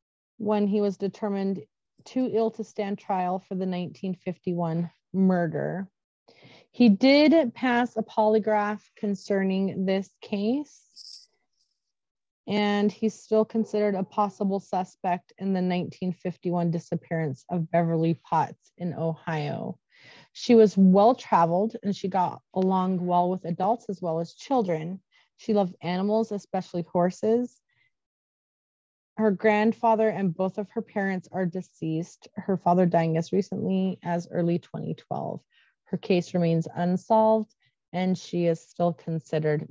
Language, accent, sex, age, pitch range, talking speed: English, American, female, 30-49, 180-220 Hz, 125 wpm